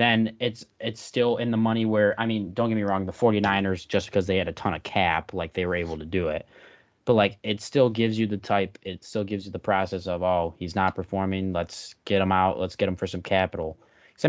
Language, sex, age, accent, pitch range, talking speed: English, male, 20-39, American, 95-120 Hz, 255 wpm